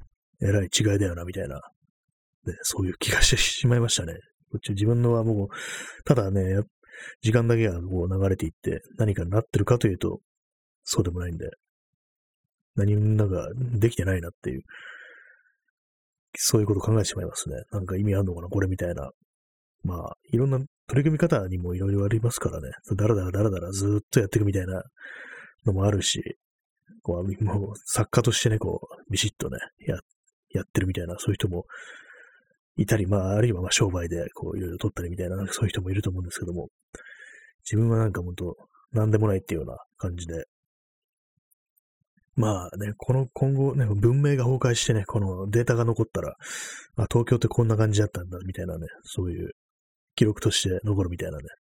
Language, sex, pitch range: Japanese, male, 95-115 Hz